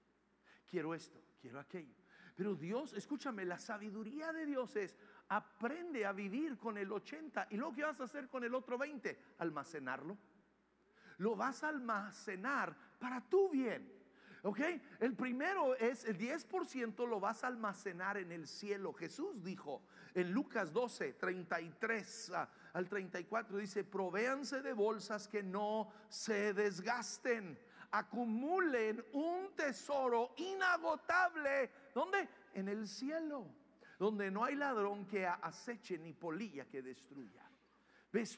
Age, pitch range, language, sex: 50-69, 205-285 Hz, English, male